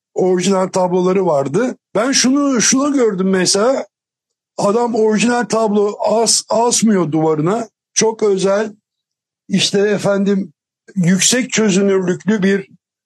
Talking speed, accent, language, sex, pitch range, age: 95 wpm, native, Turkish, male, 185-220 Hz, 60-79